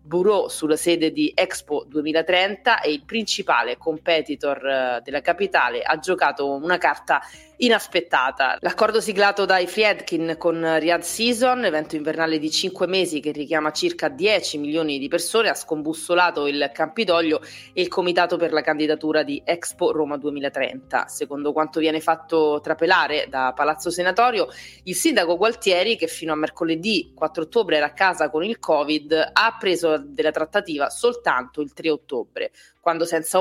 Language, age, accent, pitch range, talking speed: Italian, 30-49, native, 150-185 Hz, 150 wpm